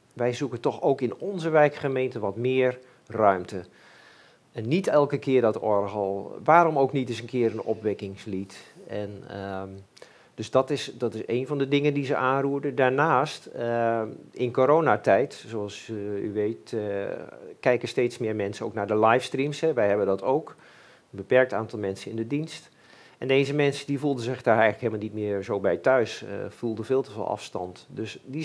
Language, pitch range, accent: Dutch, 110-140 Hz, Dutch